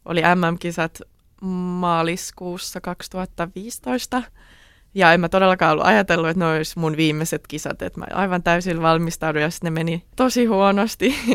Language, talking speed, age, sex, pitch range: Finnish, 135 wpm, 20-39, female, 165-190 Hz